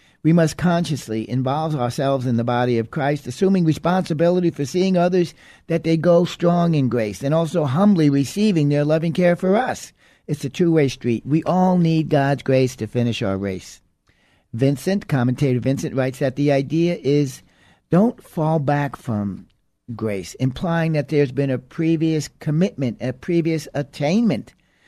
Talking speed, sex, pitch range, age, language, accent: 160 wpm, male, 120-160 Hz, 60-79, English, American